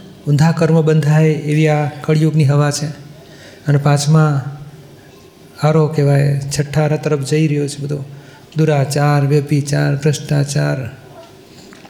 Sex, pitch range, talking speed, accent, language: male, 145-165 Hz, 105 wpm, native, Gujarati